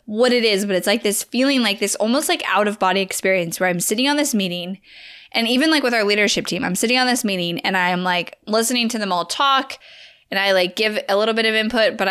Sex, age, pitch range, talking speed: female, 10-29, 190-245 Hz, 260 wpm